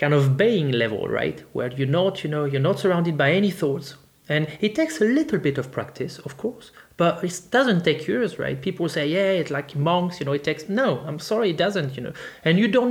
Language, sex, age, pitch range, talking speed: English, male, 30-49, 135-180 Hz, 240 wpm